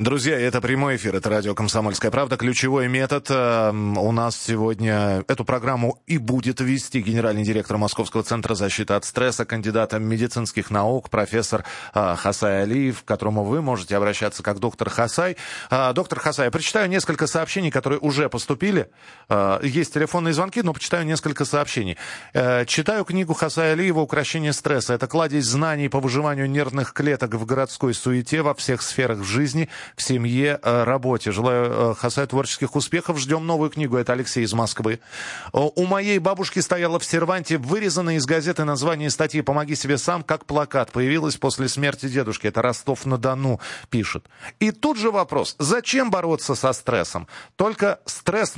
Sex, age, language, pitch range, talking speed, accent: male, 30-49, Russian, 115-155 Hz, 150 wpm, native